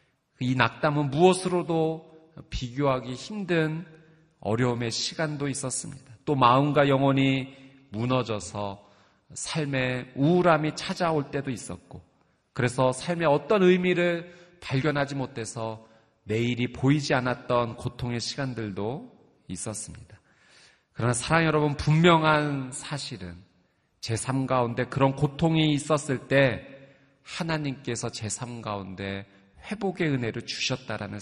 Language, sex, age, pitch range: Korean, male, 40-59, 120-160 Hz